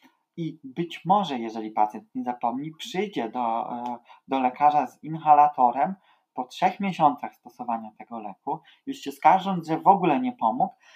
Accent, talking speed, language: native, 150 wpm, Polish